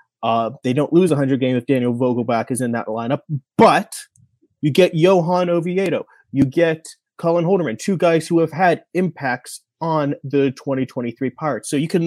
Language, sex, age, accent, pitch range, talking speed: English, male, 30-49, American, 140-200 Hz, 175 wpm